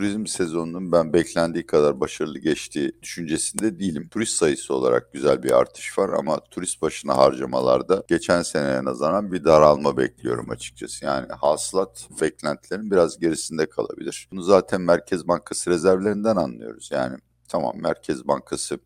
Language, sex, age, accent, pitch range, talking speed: Turkish, male, 60-79, native, 70-100 Hz, 135 wpm